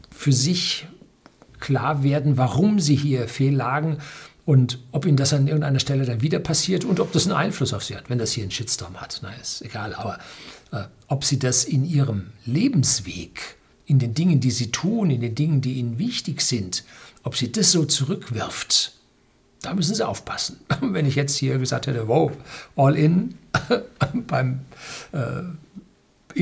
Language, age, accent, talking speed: German, 60-79, German, 175 wpm